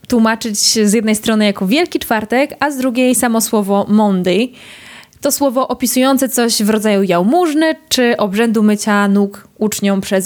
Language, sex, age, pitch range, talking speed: Polish, female, 20-39, 200-245 Hz, 150 wpm